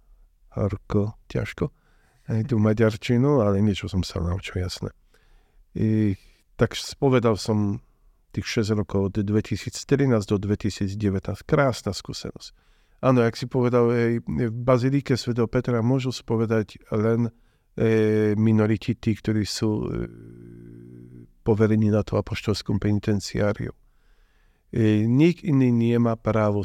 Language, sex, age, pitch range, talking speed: Slovak, male, 50-69, 100-115 Hz, 110 wpm